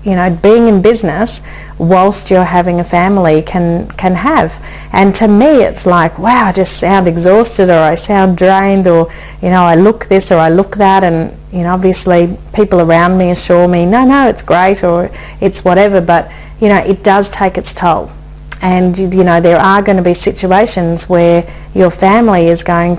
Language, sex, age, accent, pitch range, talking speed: English, female, 40-59, Australian, 170-195 Hz, 195 wpm